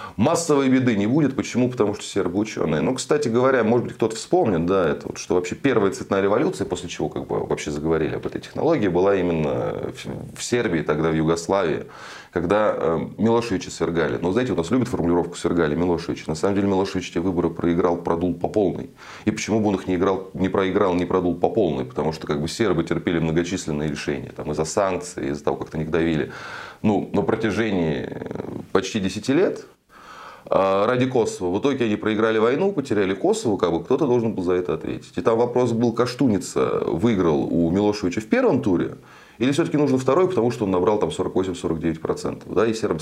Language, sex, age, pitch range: Russian, male, 30-49, 85-120 Hz